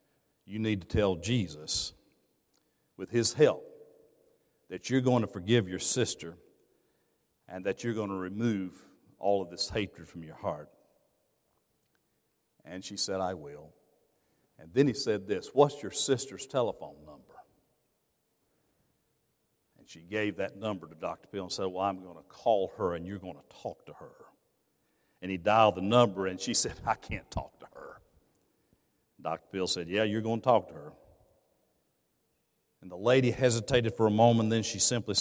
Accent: American